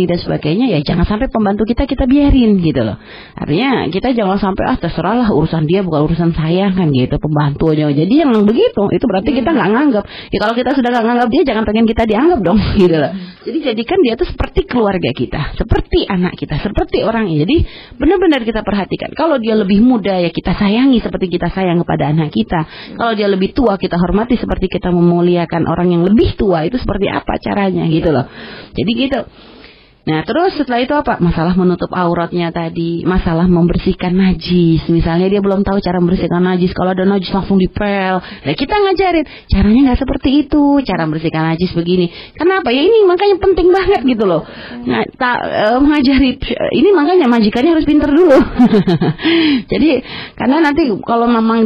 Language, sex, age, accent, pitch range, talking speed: Indonesian, female, 30-49, native, 175-270 Hz, 180 wpm